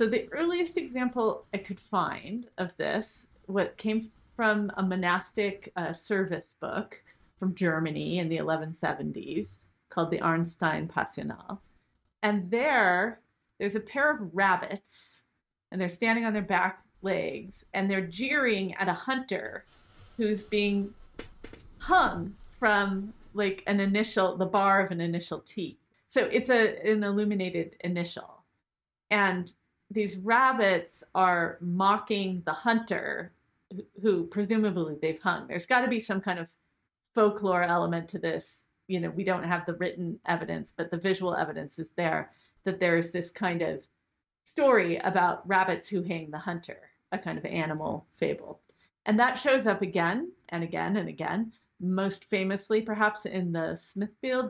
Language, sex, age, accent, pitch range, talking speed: English, female, 40-59, American, 175-215 Hz, 145 wpm